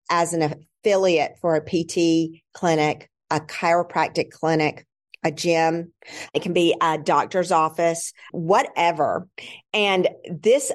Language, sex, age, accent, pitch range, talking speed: English, female, 40-59, American, 160-190 Hz, 115 wpm